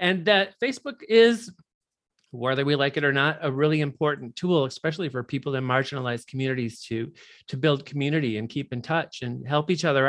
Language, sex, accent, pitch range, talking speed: English, male, American, 130-175 Hz, 190 wpm